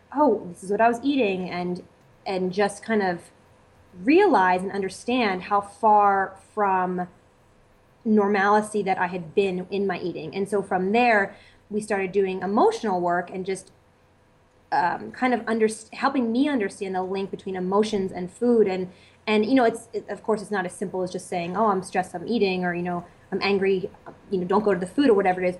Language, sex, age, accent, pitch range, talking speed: English, female, 20-39, American, 185-220 Hz, 200 wpm